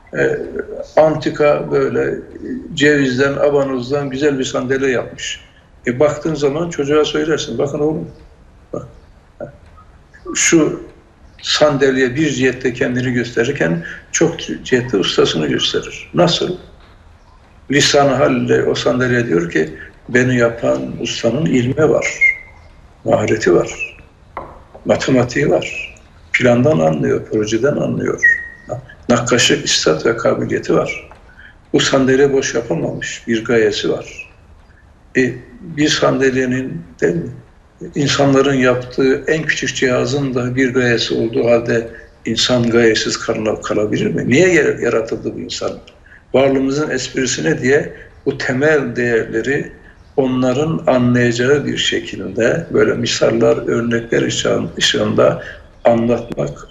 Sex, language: male, Turkish